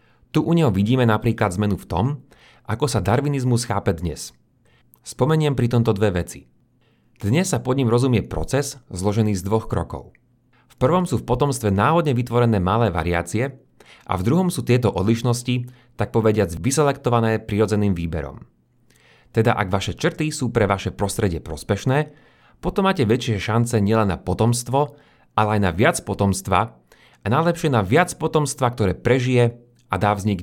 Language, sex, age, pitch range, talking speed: Slovak, male, 30-49, 100-130 Hz, 155 wpm